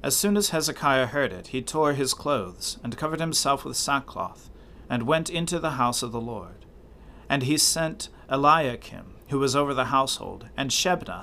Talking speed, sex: 180 wpm, male